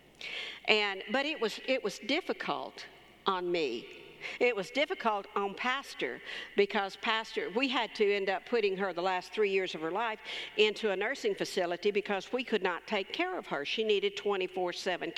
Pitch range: 195-245 Hz